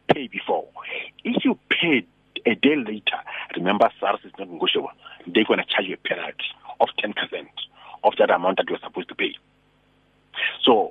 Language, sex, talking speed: English, male, 170 wpm